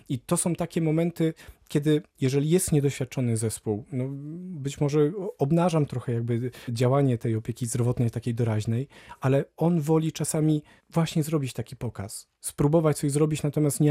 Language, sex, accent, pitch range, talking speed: Polish, male, native, 130-155 Hz, 150 wpm